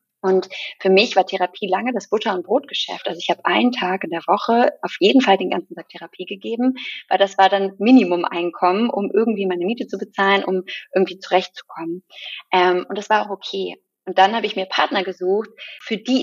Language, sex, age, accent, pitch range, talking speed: German, female, 20-39, German, 180-230 Hz, 200 wpm